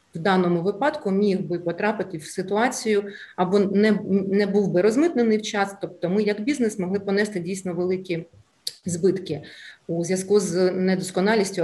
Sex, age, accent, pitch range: female, 30-49, native, 175-200 Hz